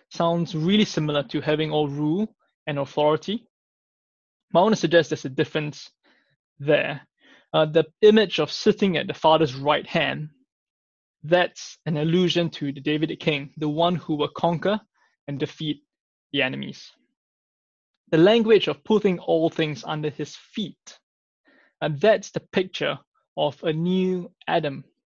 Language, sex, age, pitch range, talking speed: English, male, 20-39, 150-175 Hz, 150 wpm